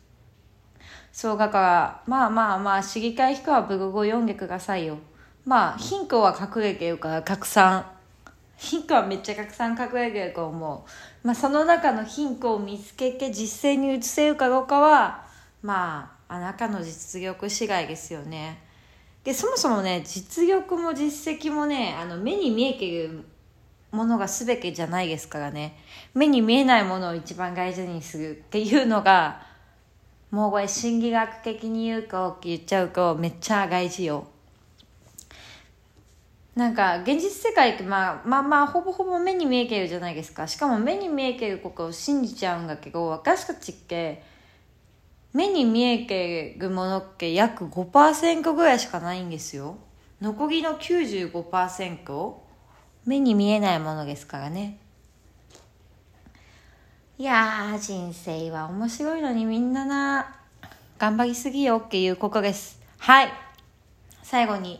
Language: Japanese